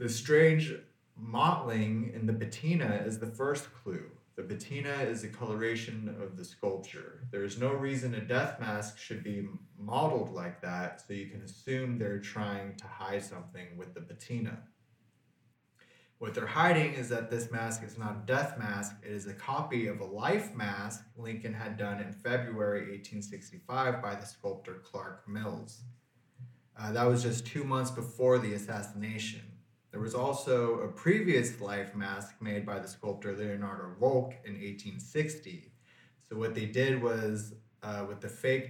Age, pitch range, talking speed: 20-39, 105-120 Hz, 165 wpm